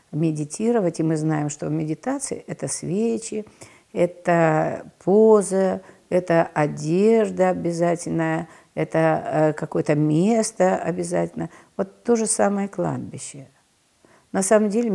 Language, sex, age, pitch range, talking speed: Russian, female, 50-69, 145-180 Hz, 110 wpm